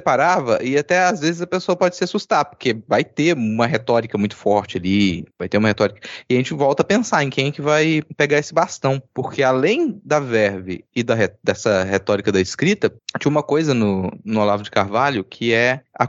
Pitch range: 120-160 Hz